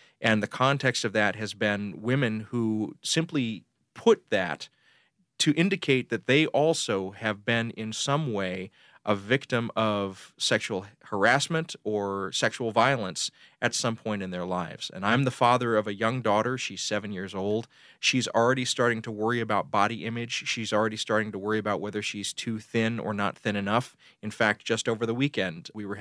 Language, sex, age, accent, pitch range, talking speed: English, male, 30-49, American, 105-130 Hz, 180 wpm